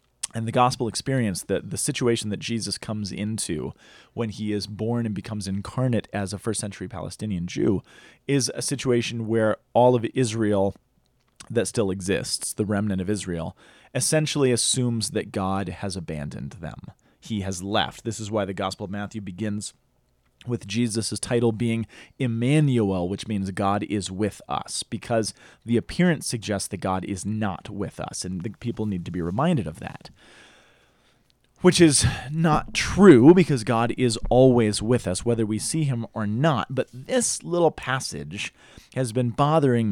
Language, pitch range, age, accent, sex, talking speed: English, 100-130 Hz, 30-49, American, male, 165 wpm